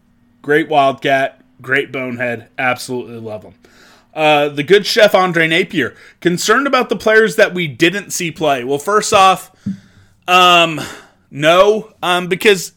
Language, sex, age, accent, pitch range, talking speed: English, male, 20-39, American, 145-175 Hz, 135 wpm